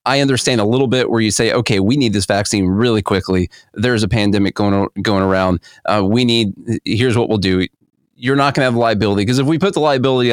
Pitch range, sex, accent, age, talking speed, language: 105-125 Hz, male, American, 30-49, 250 wpm, English